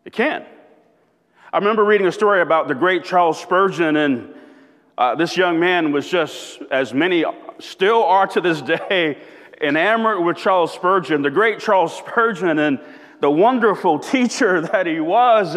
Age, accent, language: 30-49, American, English